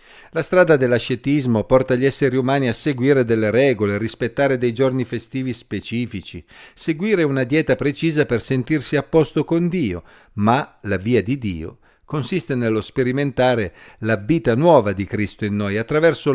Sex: male